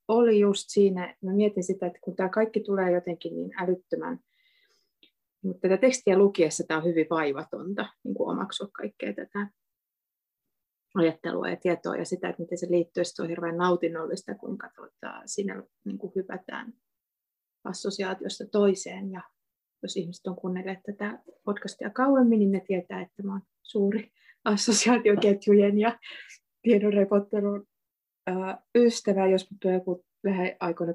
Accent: native